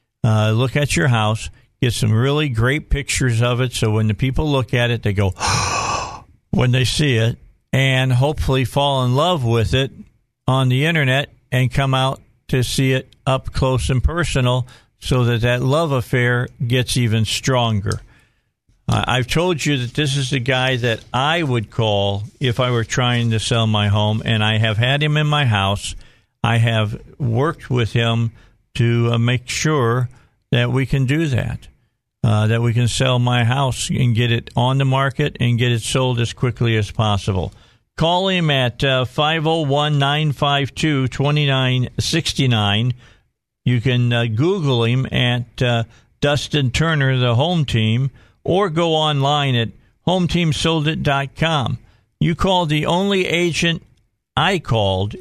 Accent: American